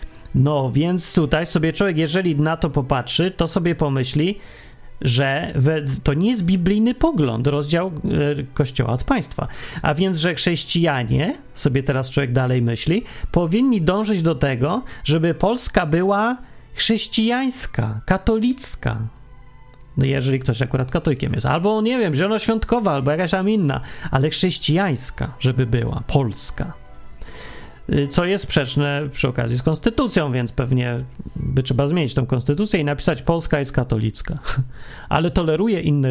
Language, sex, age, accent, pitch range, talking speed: Polish, male, 40-59, native, 130-185 Hz, 135 wpm